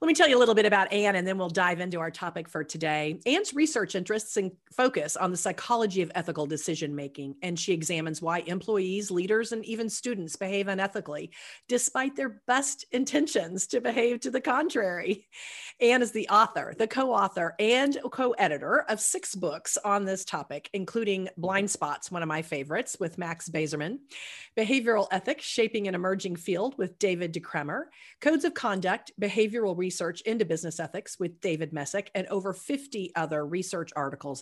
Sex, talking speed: female, 180 wpm